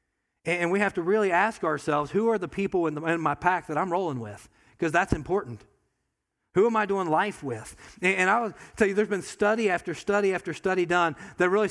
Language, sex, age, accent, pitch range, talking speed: English, male, 40-59, American, 135-180 Hz, 225 wpm